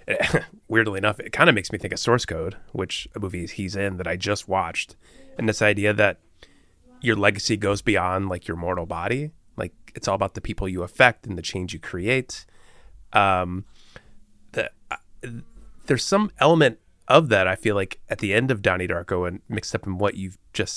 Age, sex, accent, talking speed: 30-49, male, American, 200 wpm